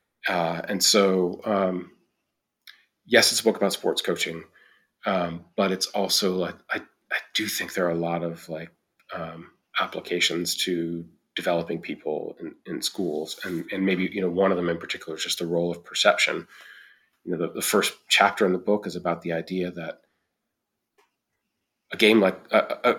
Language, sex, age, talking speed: English, male, 30-49, 175 wpm